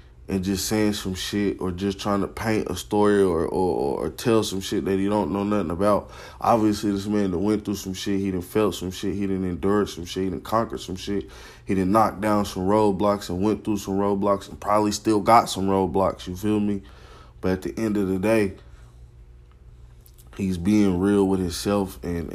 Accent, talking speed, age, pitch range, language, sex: American, 215 wpm, 20-39, 90-105 Hz, English, male